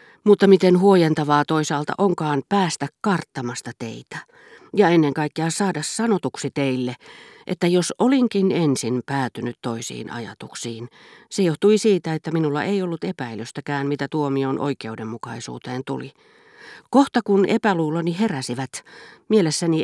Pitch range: 130-185 Hz